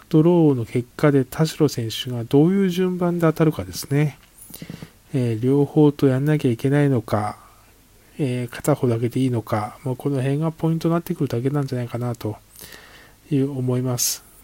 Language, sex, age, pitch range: Japanese, male, 20-39, 120-145 Hz